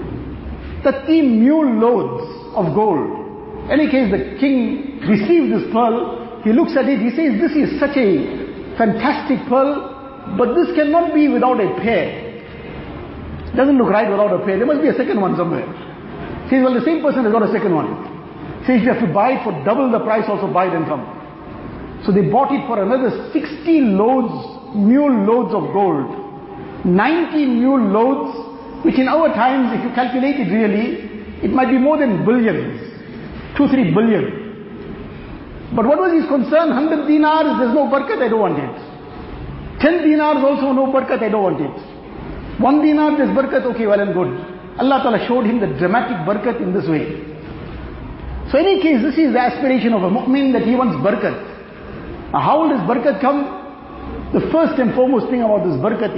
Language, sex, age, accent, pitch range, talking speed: English, male, 50-69, Indian, 215-280 Hz, 185 wpm